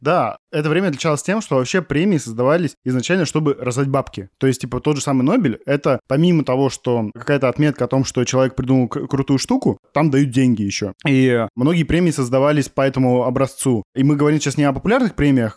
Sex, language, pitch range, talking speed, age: male, Russian, 125-150 Hz, 200 wpm, 20-39